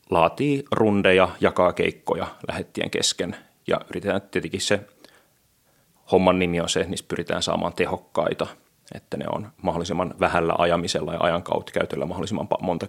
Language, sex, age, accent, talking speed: Finnish, male, 30-49, native, 140 wpm